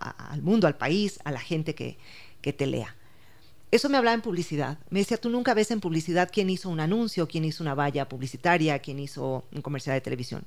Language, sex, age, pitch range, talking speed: Spanish, female, 40-59, 145-195 Hz, 220 wpm